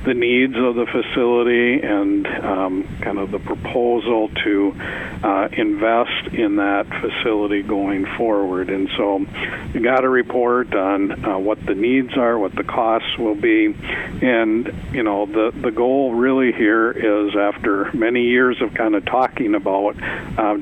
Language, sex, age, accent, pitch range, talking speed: English, male, 50-69, American, 105-125 Hz, 155 wpm